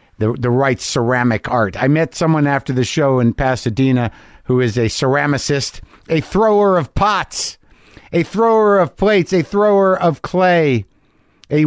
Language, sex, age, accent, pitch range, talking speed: English, male, 50-69, American, 115-145 Hz, 155 wpm